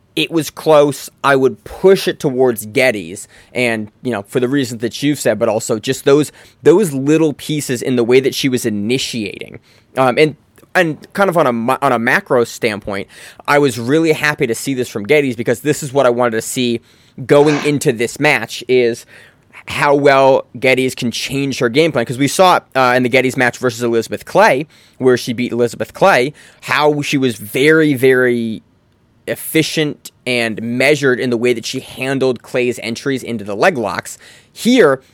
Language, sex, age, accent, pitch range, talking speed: English, male, 20-39, American, 120-145 Hz, 190 wpm